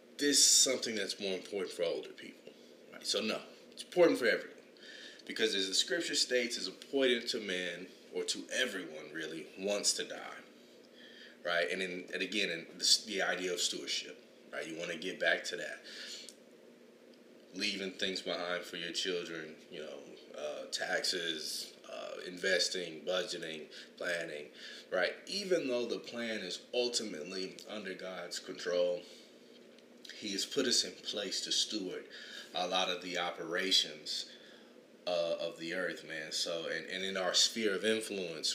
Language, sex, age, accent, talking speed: English, male, 30-49, American, 155 wpm